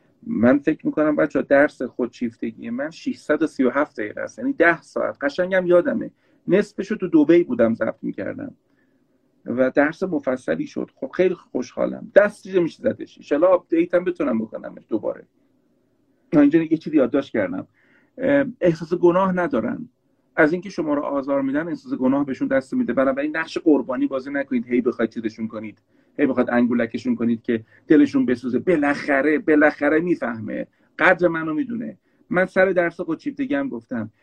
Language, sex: Persian, male